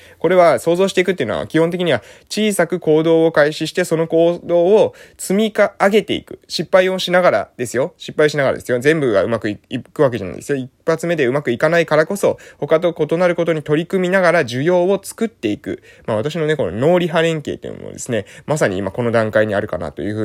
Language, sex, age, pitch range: Japanese, male, 20-39, 115-170 Hz